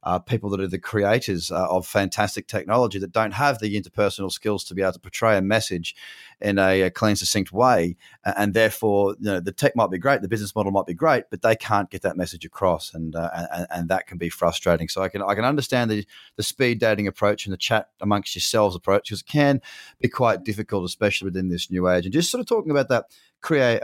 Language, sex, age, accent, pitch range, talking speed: English, male, 30-49, Australian, 95-130 Hz, 240 wpm